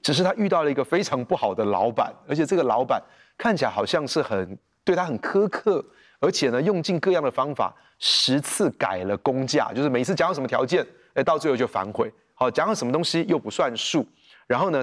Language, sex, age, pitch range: Chinese, male, 30-49, 115-155 Hz